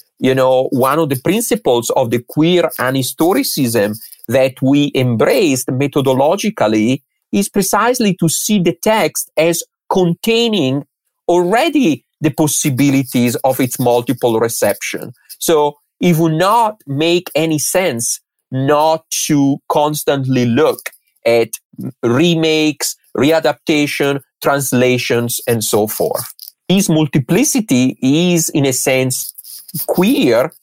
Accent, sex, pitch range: Italian, male, 130-170 Hz